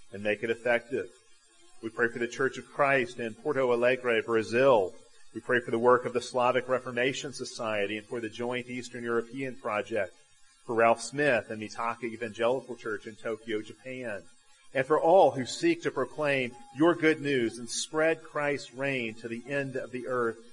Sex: male